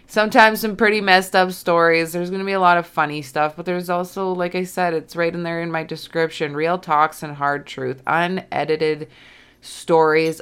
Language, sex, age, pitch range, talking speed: English, female, 20-39, 155-195 Hz, 200 wpm